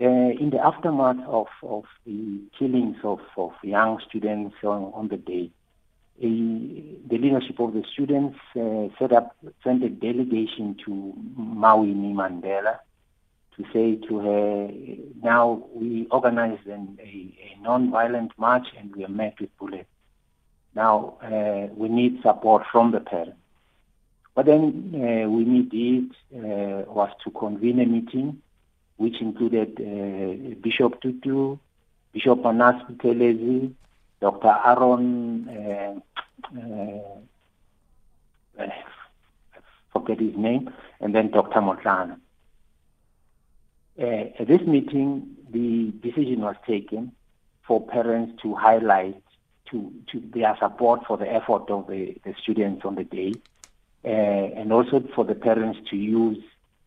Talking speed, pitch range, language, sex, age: 130 wpm, 100-120 Hz, English, male, 50-69